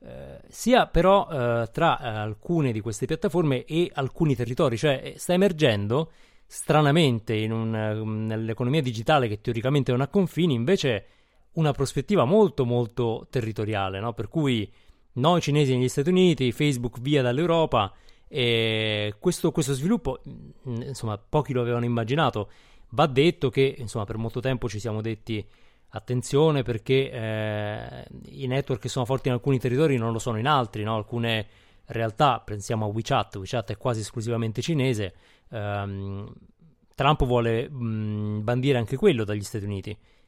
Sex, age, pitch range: male, 30-49, 110-140 Hz